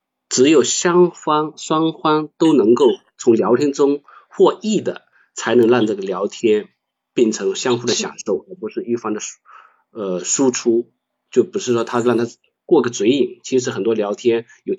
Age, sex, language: 50-69, male, Chinese